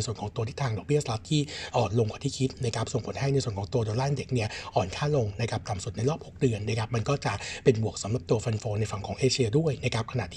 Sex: male